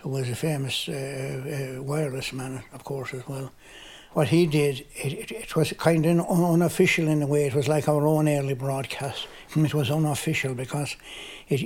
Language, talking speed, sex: English, 190 wpm, male